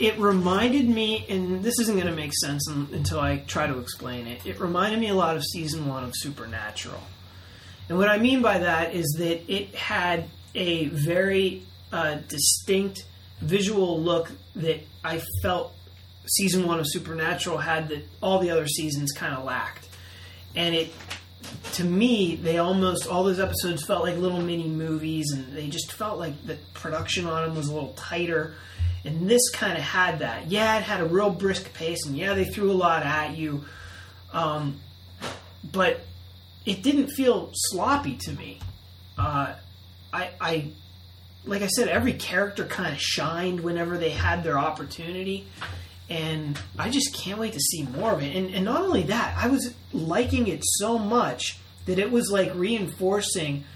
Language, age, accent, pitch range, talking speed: English, 30-49, American, 110-185 Hz, 175 wpm